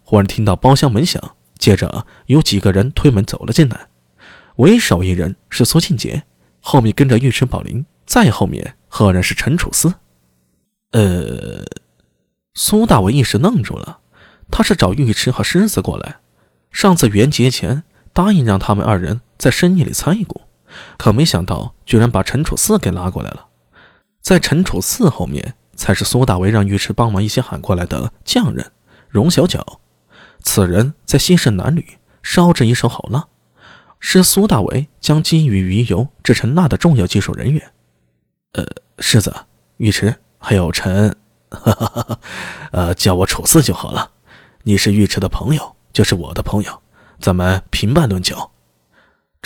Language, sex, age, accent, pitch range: Chinese, male, 20-39, native, 95-145 Hz